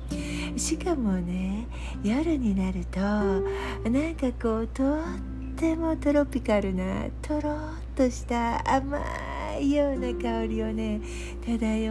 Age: 60-79